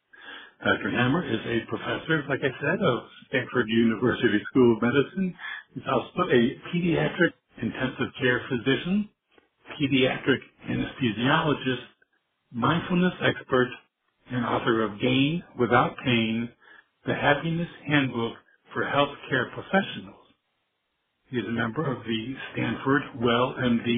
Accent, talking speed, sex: American, 115 wpm, male